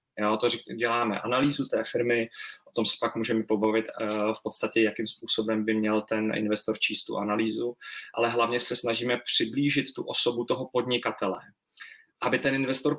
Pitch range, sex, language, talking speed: 115-130 Hz, male, Czech, 160 wpm